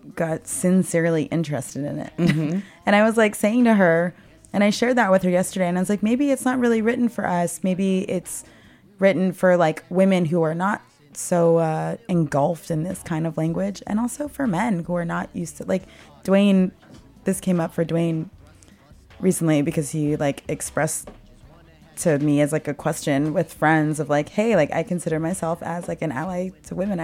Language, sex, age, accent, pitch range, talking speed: English, female, 20-39, American, 155-185 Hz, 195 wpm